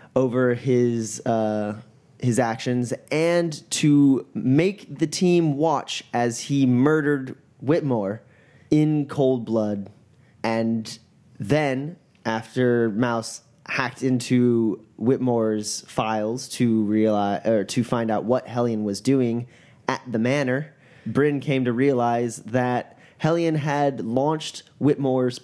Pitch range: 115-140 Hz